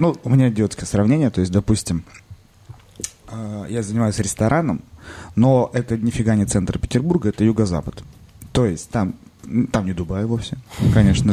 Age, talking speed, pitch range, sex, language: 30-49, 145 wpm, 90-115 Hz, male, Russian